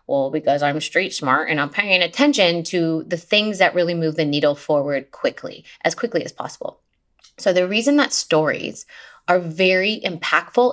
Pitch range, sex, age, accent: 165-220 Hz, female, 20-39, American